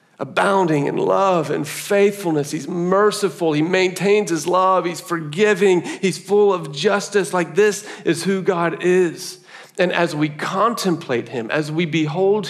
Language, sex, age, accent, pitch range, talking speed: English, male, 40-59, American, 140-185 Hz, 150 wpm